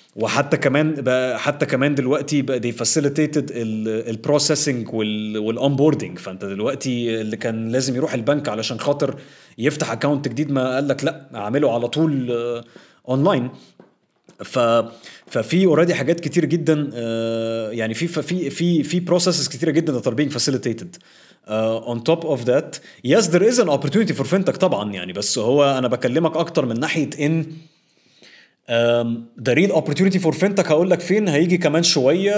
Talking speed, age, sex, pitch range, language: 160 wpm, 30-49, male, 120-160 Hz, Arabic